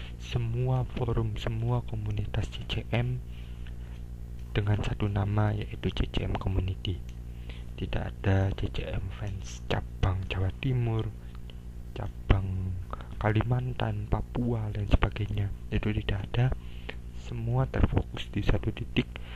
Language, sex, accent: Indonesian, male, native